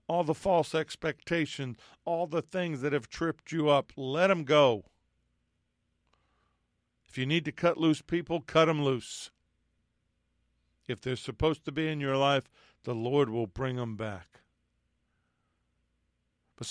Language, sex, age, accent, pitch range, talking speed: English, male, 50-69, American, 125-155 Hz, 145 wpm